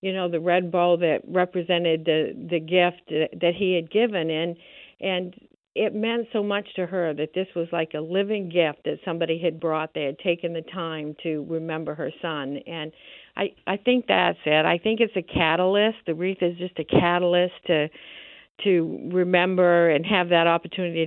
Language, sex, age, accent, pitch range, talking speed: English, female, 60-79, American, 165-195 Hz, 190 wpm